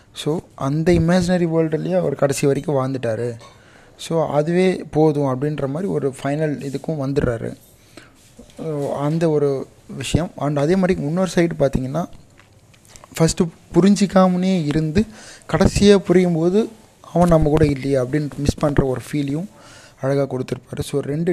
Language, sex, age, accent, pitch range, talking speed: Tamil, male, 20-39, native, 135-160 Hz, 130 wpm